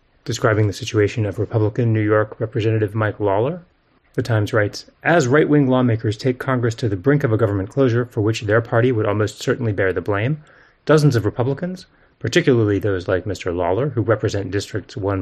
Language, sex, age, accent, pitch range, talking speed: English, male, 30-49, American, 100-130 Hz, 185 wpm